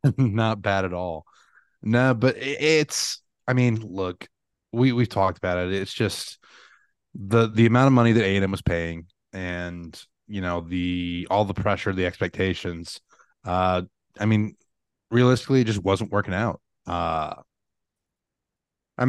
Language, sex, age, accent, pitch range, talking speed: English, male, 30-49, American, 90-110 Hz, 145 wpm